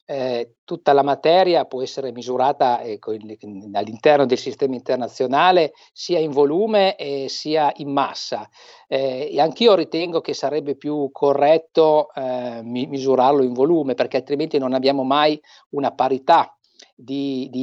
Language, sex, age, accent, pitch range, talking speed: Italian, male, 50-69, native, 135-215 Hz, 145 wpm